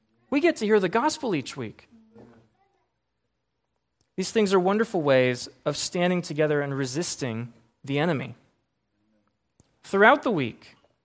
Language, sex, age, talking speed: English, male, 20-39, 125 wpm